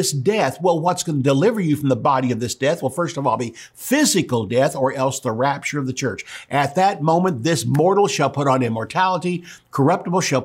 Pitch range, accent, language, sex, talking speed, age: 125-160 Hz, American, English, male, 220 wpm, 50-69